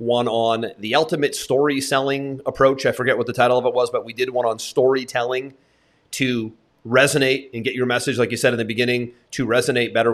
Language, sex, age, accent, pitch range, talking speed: English, male, 30-49, American, 120-170 Hz, 215 wpm